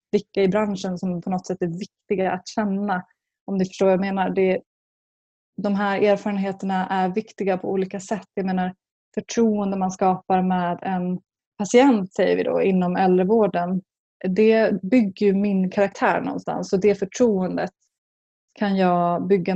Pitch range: 185-220 Hz